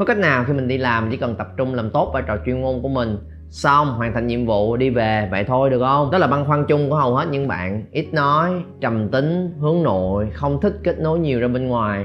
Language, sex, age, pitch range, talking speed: Vietnamese, male, 20-39, 110-150 Hz, 270 wpm